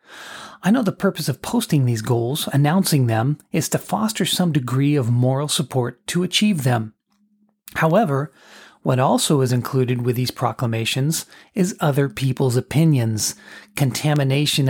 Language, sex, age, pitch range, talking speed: English, male, 40-59, 130-185 Hz, 140 wpm